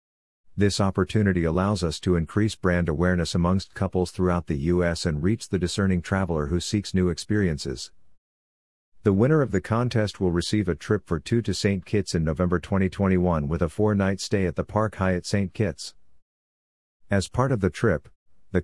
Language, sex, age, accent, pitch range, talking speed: English, male, 50-69, American, 85-100 Hz, 175 wpm